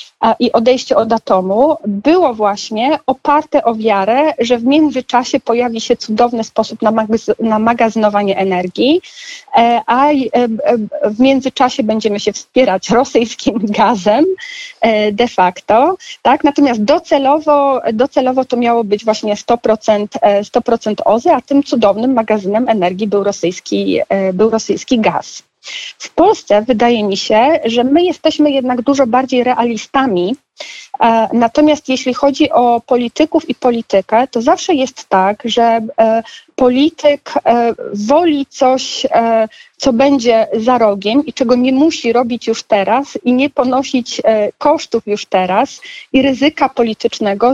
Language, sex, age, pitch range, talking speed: Polish, female, 40-59, 225-280 Hz, 120 wpm